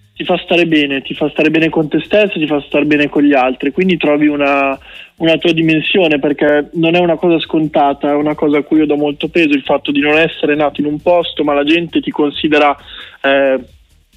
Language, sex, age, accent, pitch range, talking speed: Italian, male, 20-39, native, 140-160 Hz, 230 wpm